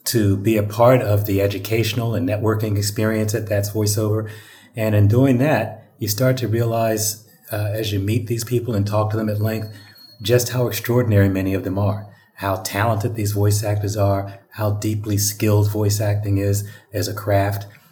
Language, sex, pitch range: English, male, 100-115 Hz